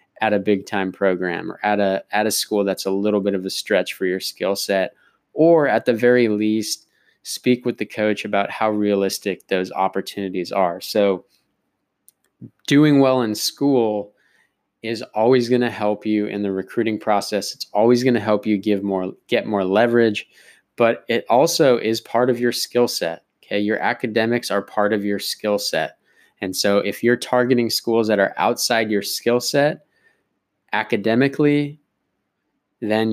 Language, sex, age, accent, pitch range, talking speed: English, male, 20-39, American, 100-120 Hz, 170 wpm